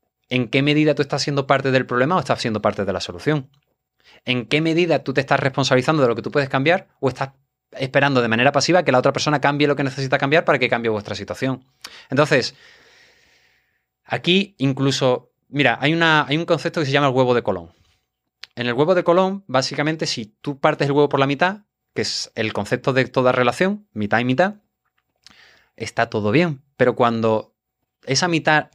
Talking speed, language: 200 wpm, English